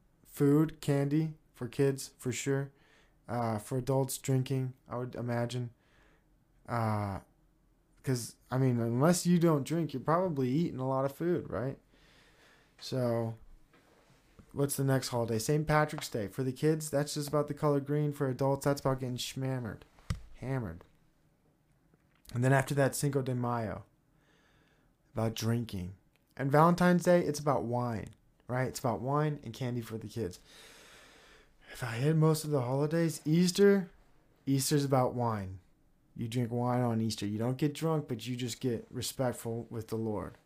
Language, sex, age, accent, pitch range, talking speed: English, male, 20-39, American, 115-150 Hz, 155 wpm